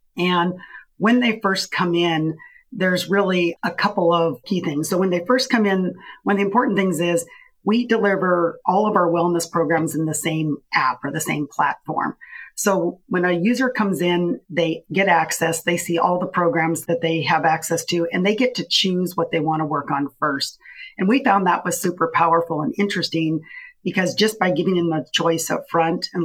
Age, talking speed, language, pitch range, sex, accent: 40-59, 205 wpm, English, 160-190 Hz, female, American